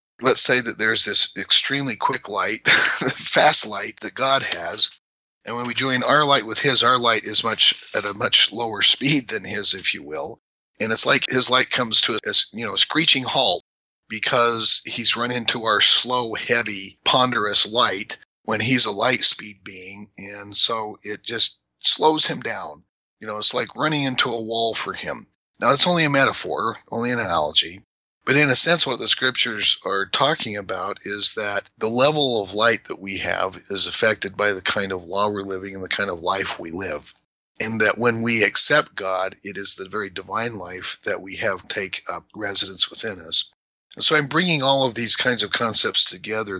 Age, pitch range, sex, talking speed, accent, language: 40-59, 95-125 Hz, male, 200 wpm, American, English